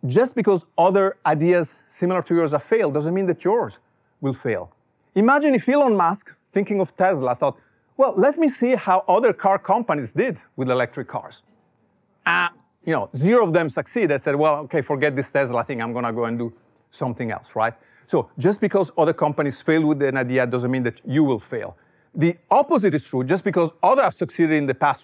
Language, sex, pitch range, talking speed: English, male, 140-190 Hz, 205 wpm